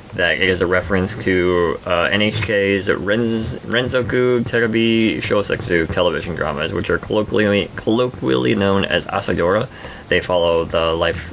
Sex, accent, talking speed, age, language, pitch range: male, American, 130 wpm, 20-39, English, 85-105 Hz